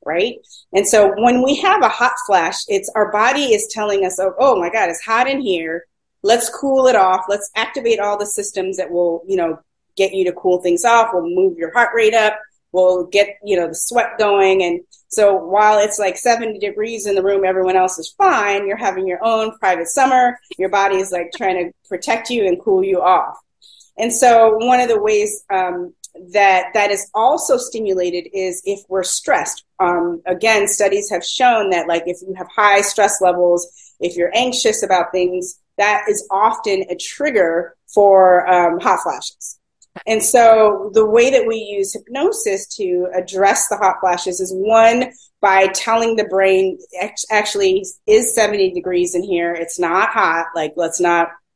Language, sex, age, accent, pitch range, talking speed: English, female, 30-49, American, 180-225 Hz, 185 wpm